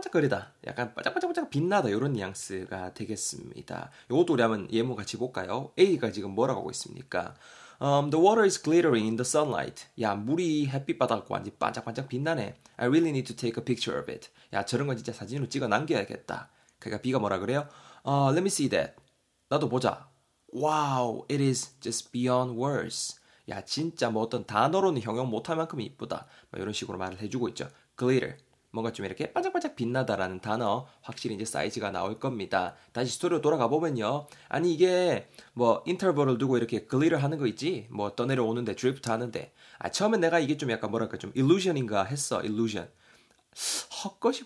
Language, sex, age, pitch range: Korean, male, 20-39, 115-160 Hz